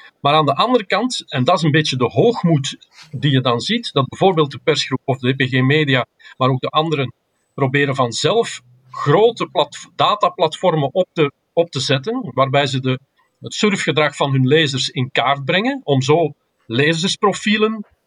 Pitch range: 135-175 Hz